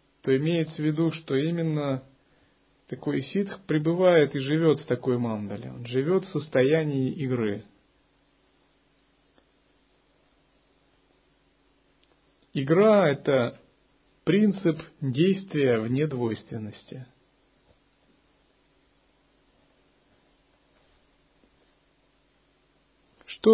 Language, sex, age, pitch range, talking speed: Russian, male, 40-59, 130-165 Hz, 65 wpm